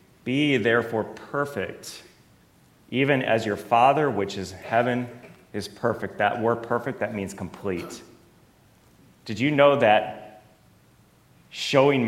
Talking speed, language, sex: 115 wpm, English, male